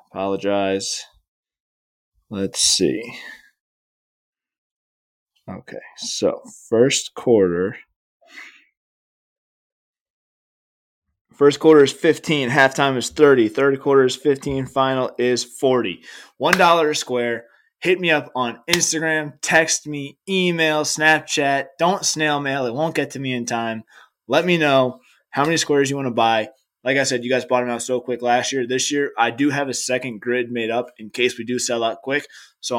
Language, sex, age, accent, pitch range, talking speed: English, male, 20-39, American, 115-140 Hz, 150 wpm